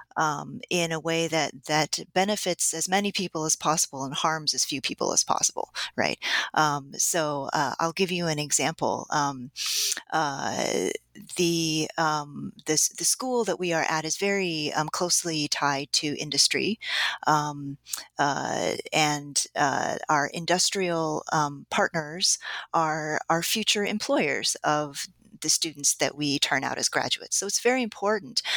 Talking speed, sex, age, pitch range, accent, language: 150 wpm, female, 30-49, 155-215 Hz, American, English